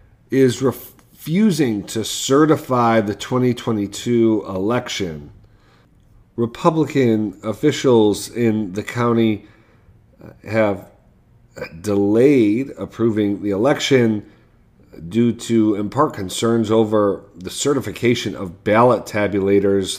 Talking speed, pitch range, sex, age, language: 85 wpm, 95-115 Hz, male, 40-59, English